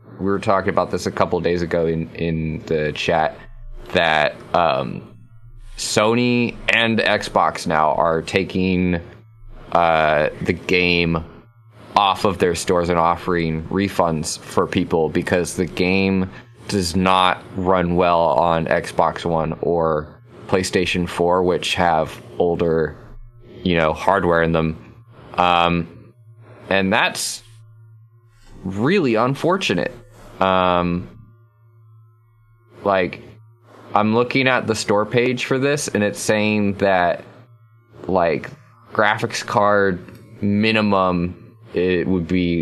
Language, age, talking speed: English, 20-39, 115 wpm